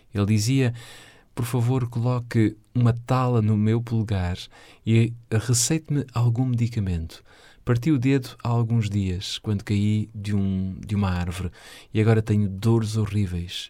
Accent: Portuguese